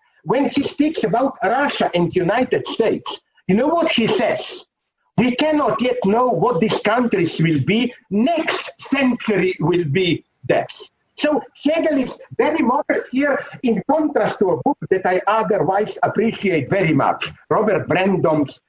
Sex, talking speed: male, 150 wpm